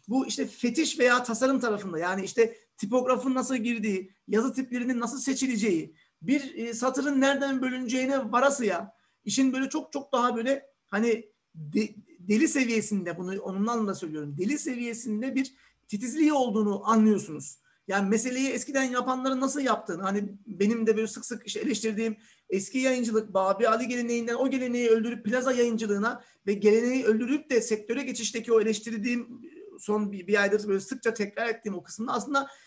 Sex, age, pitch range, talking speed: male, 40-59, 215-265 Hz, 150 wpm